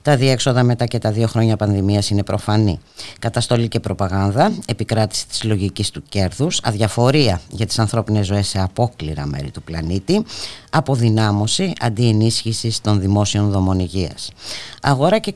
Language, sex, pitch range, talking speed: Greek, female, 100-130 Hz, 145 wpm